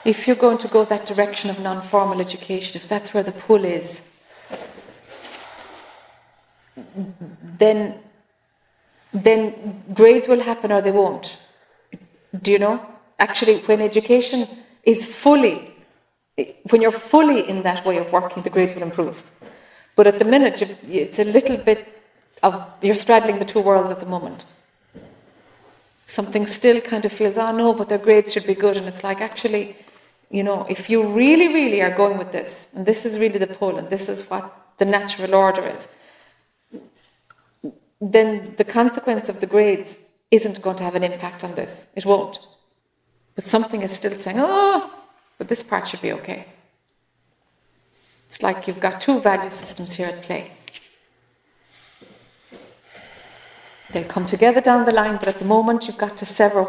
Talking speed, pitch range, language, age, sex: 165 wpm, 190-225 Hz, English, 60-79, female